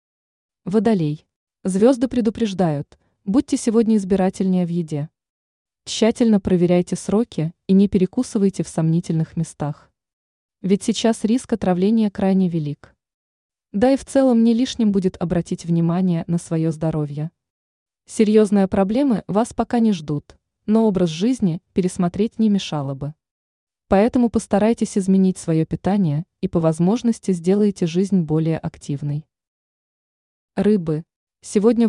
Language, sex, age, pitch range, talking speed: Russian, female, 20-39, 165-220 Hz, 115 wpm